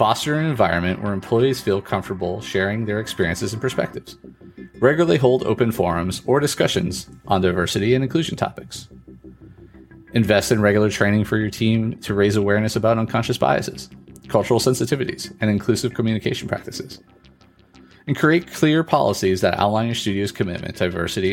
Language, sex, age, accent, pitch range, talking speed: English, male, 30-49, American, 90-115 Hz, 150 wpm